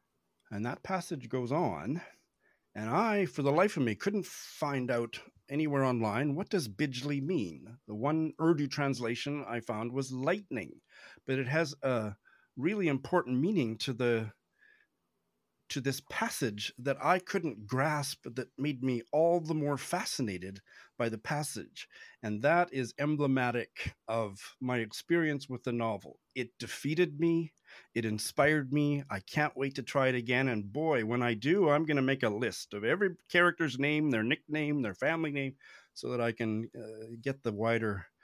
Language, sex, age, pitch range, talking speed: English, male, 40-59, 115-155 Hz, 165 wpm